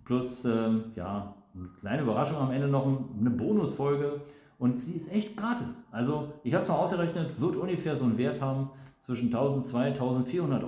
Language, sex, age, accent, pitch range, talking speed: German, male, 40-59, German, 120-165 Hz, 175 wpm